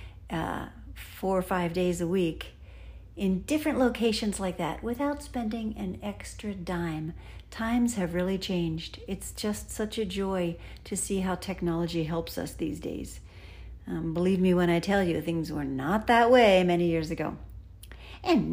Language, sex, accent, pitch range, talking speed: English, female, American, 165-210 Hz, 160 wpm